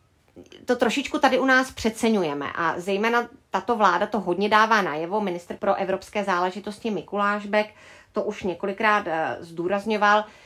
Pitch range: 190-240 Hz